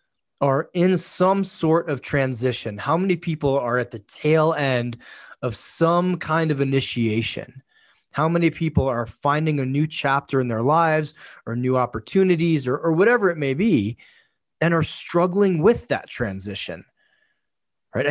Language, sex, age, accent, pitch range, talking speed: English, male, 30-49, American, 125-165 Hz, 150 wpm